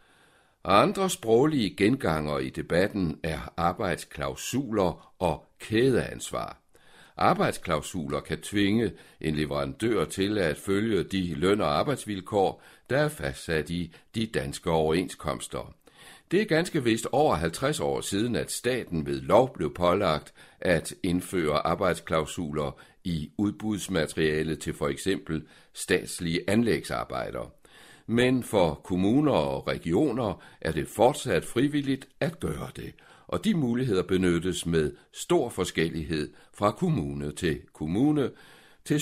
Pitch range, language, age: 80-110 Hz, Danish, 60-79